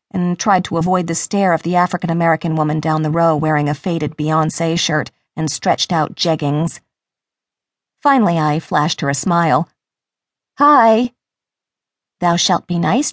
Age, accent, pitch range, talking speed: 40-59, American, 155-205 Hz, 145 wpm